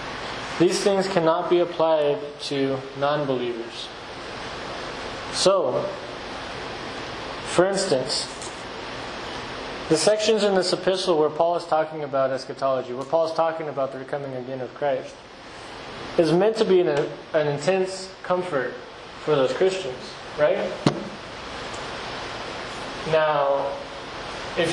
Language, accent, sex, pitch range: English, American, male, 140-180 Hz